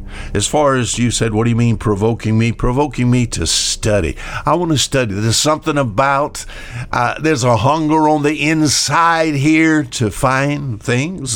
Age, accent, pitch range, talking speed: 60-79, American, 100-135 Hz, 175 wpm